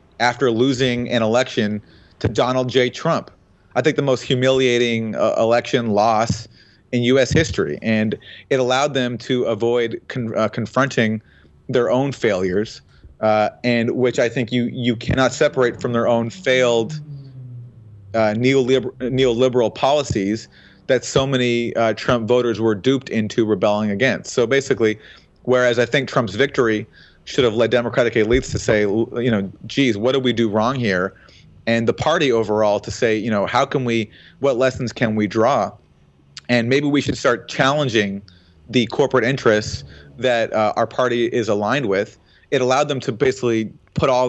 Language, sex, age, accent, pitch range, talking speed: English, male, 30-49, American, 110-130 Hz, 165 wpm